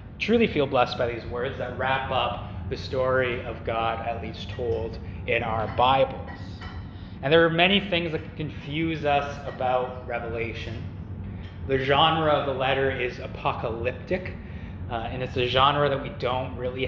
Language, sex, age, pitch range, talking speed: English, male, 20-39, 105-135 Hz, 160 wpm